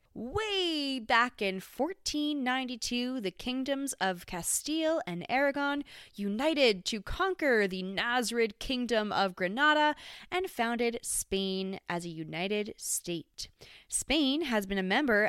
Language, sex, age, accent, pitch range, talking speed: English, female, 20-39, American, 190-280 Hz, 120 wpm